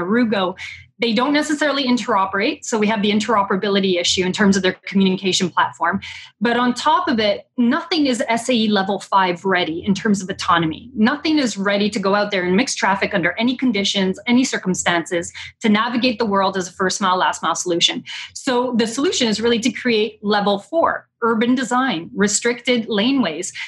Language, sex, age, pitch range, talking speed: English, female, 30-49, 195-240 Hz, 175 wpm